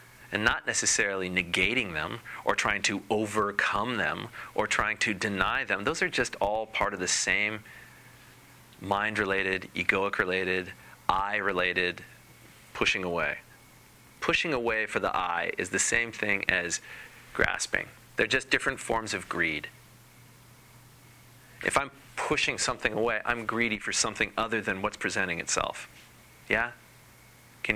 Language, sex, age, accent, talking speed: English, male, 30-49, American, 130 wpm